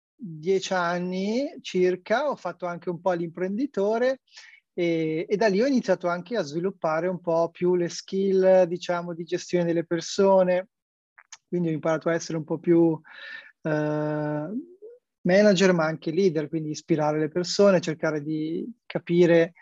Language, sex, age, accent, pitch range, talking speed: Italian, male, 20-39, native, 160-190 Hz, 145 wpm